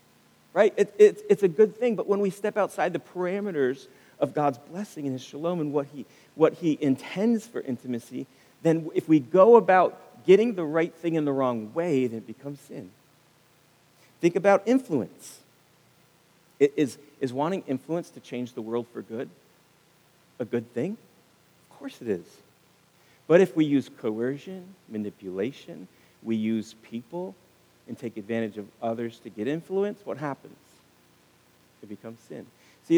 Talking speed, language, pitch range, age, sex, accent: 160 wpm, English, 120-185 Hz, 40-59, male, American